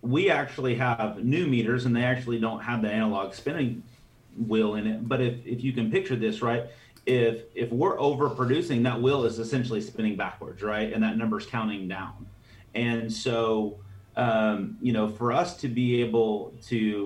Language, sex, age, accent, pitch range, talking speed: English, male, 30-49, American, 110-125 Hz, 180 wpm